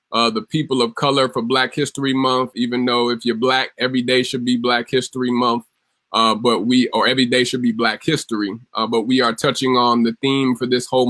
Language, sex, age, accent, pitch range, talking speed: English, male, 20-39, American, 115-125 Hz, 225 wpm